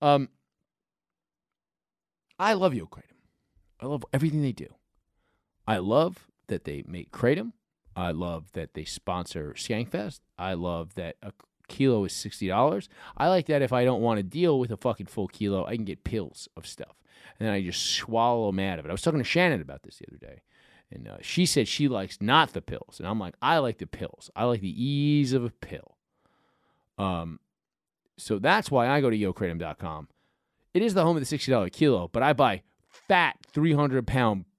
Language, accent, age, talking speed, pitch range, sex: English, American, 30-49, 195 wpm, 95-150 Hz, male